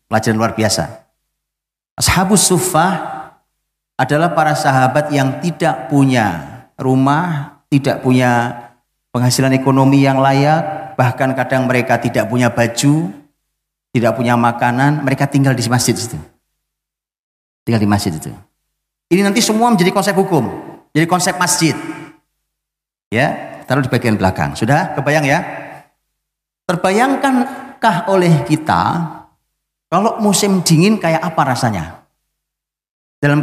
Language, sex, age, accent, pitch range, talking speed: Indonesian, male, 40-59, native, 125-180 Hz, 115 wpm